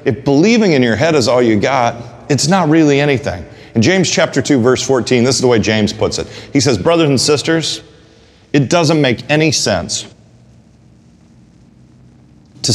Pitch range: 115-150 Hz